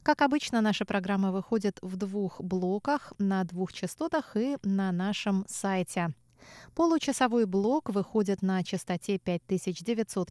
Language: Russian